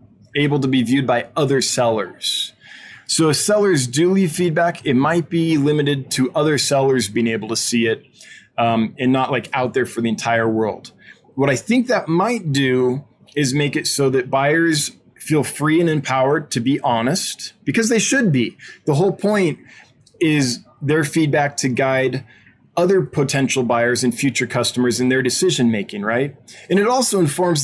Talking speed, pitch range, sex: 175 wpm, 125-155 Hz, male